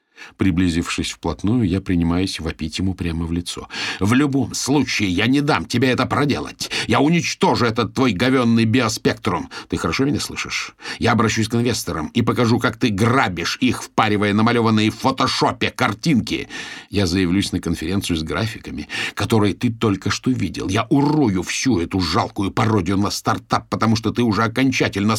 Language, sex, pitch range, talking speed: Russian, male, 95-120 Hz, 160 wpm